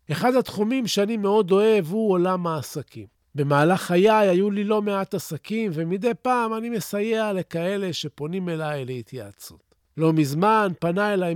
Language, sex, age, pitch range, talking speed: Hebrew, male, 40-59, 155-225 Hz, 145 wpm